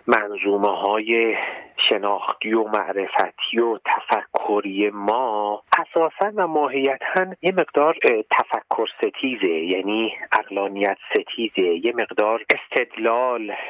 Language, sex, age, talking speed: Persian, male, 40-59, 90 wpm